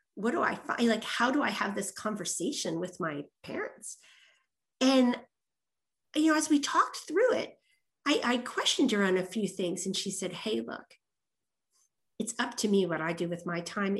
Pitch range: 175-220 Hz